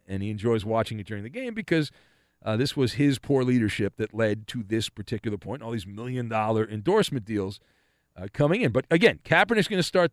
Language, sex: English, male